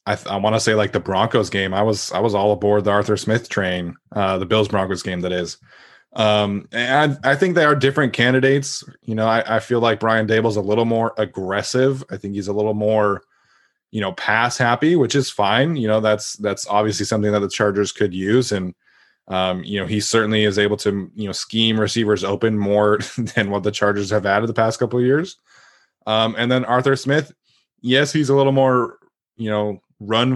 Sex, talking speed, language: male, 215 wpm, English